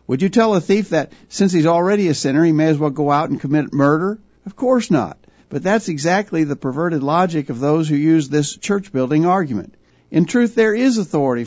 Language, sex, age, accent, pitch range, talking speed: English, male, 60-79, American, 140-180 Hz, 220 wpm